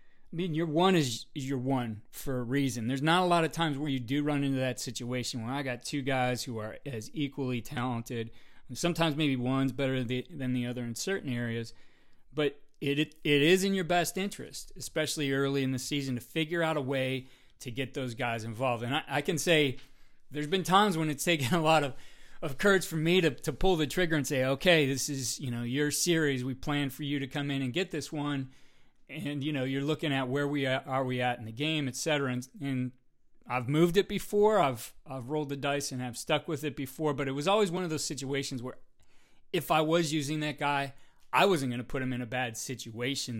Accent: American